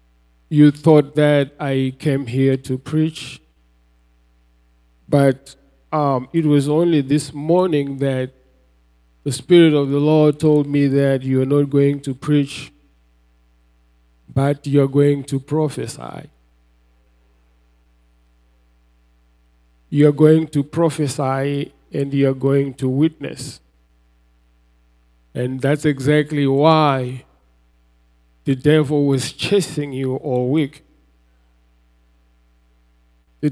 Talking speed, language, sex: 100 wpm, English, male